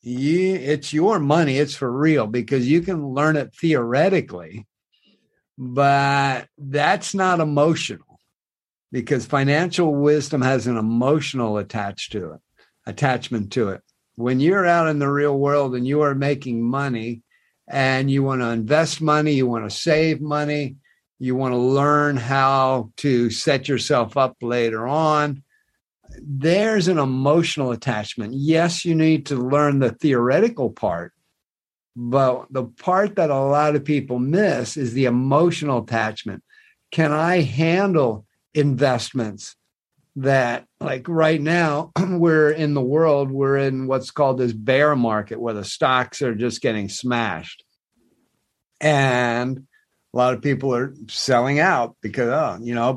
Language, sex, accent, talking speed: English, male, American, 140 wpm